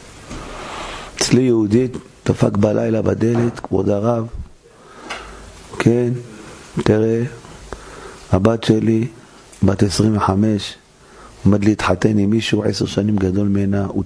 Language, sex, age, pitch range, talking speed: Hebrew, male, 50-69, 100-135 Hz, 95 wpm